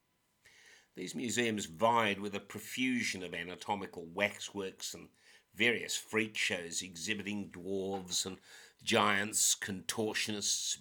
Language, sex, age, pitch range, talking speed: English, male, 60-79, 95-110 Hz, 100 wpm